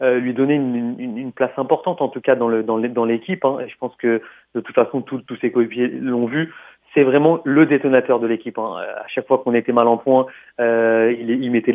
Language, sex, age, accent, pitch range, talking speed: French, male, 30-49, French, 120-135 Hz, 250 wpm